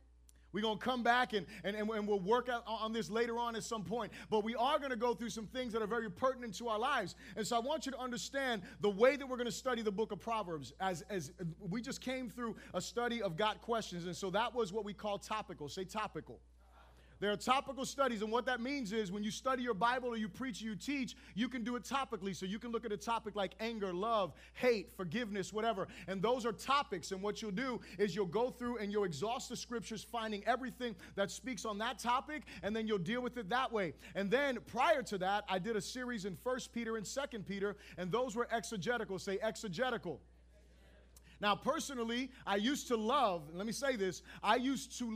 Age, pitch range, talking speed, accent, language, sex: 30-49, 195-245 Hz, 235 wpm, American, English, male